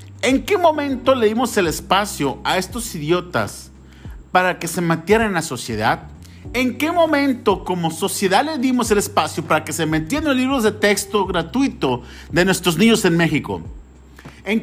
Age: 50-69